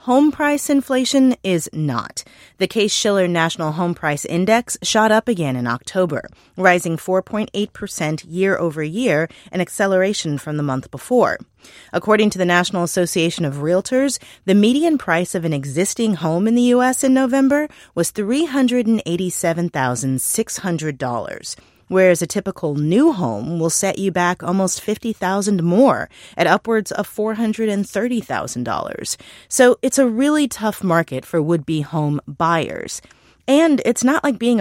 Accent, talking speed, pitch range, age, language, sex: American, 140 wpm, 170-240 Hz, 30-49, English, female